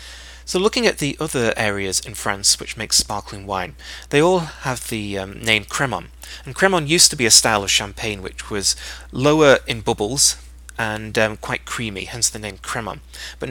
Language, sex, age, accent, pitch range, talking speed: English, male, 30-49, British, 100-125 Hz, 185 wpm